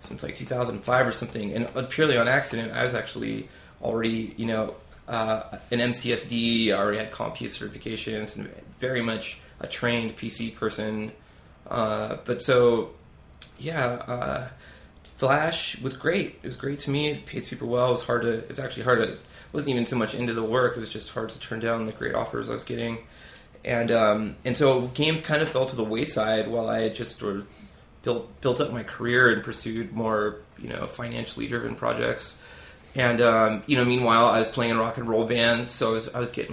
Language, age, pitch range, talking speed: English, 20-39, 110-120 Hz, 205 wpm